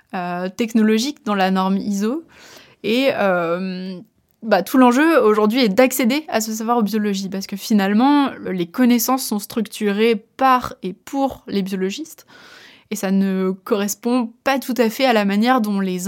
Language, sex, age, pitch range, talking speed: French, female, 20-39, 195-235 Hz, 160 wpm